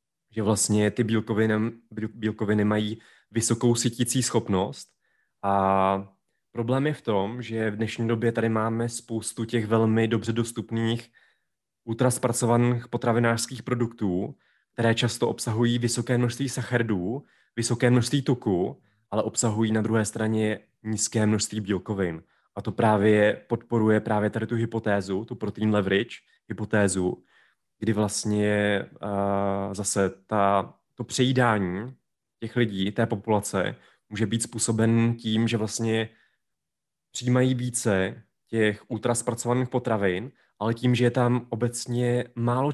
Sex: male